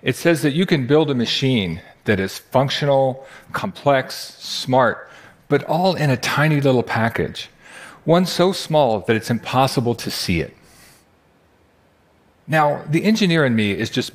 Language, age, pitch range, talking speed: Arabic, 40-59, 110-150 Hz, 155 wpm